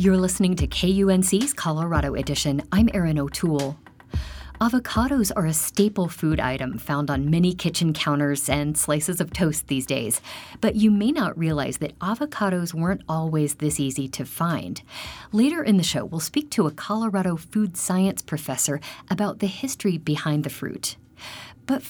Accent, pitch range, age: American, 145-195 Hz, 50-69